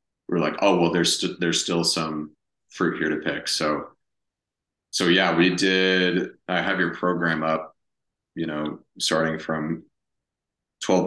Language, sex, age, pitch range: English, male, 30-49, 80-90 Hz